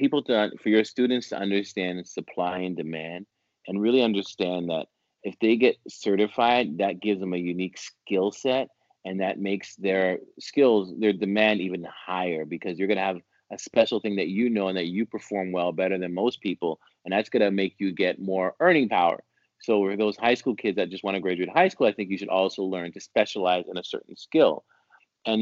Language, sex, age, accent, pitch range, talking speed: English, male, 30-49, American, 95-115 Hz, 210 wpm